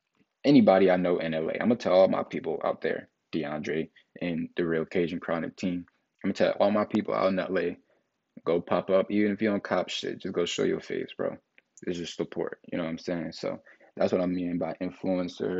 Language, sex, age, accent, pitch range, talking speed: English, male, 20-39, American, 85-95 Hz, 225 wpm